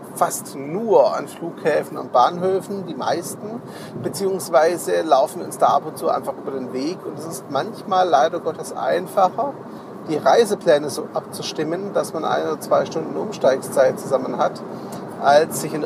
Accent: German